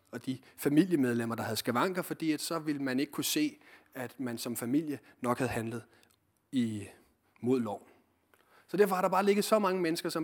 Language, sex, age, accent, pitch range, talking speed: Danish, male, 30-49, native, 125-170 Hz, 190 wpm